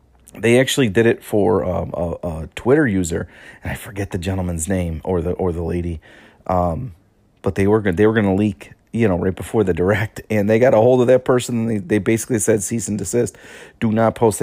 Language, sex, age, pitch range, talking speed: English, male, 30-49, 100-135 Hz, 230 wpm